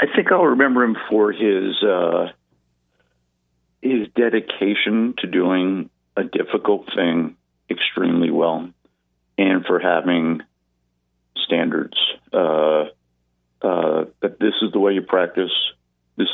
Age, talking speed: 50-69, 115 wpm